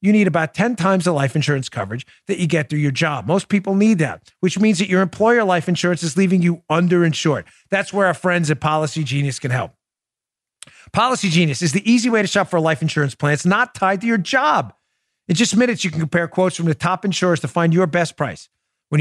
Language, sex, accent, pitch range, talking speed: English, male, American, 140-185 Hz, 235 wpm